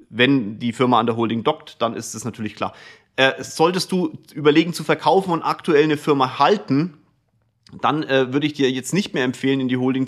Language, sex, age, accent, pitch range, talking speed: German, male, 30-49, German, 120-150 Hz, 210 wpm